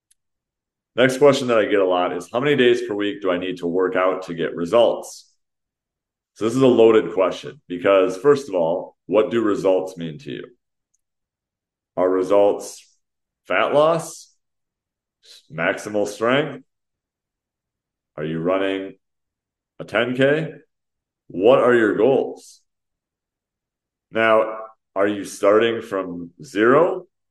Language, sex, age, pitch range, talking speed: English, male, 30-49, 90-110 Hz, 130 wpm